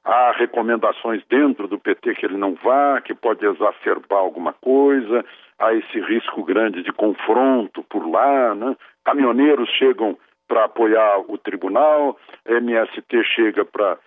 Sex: male